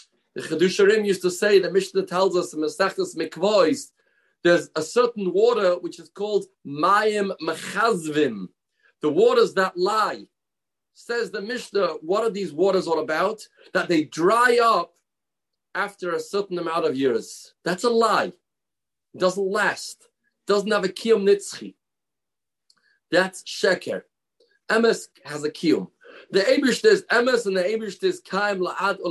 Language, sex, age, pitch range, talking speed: English, male, 40-59, 170-230 Hz, 145 wpm